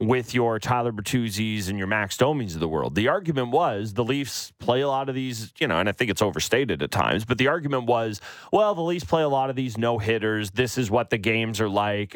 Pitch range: 105-140 Hz